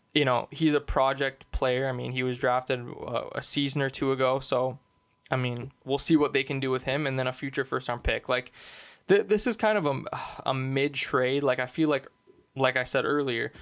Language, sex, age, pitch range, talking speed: English, male, 20-39, 125-145 Hz, 215 wpm